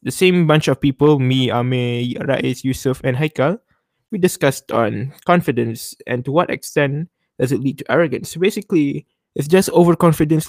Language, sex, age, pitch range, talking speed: English, male, 20-39, 130-175 Hz, 160 wpm